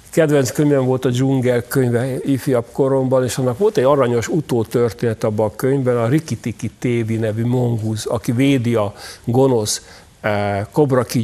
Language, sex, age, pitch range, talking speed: Hungarian, male, 60-79, 120-140 Hz, 150 wpm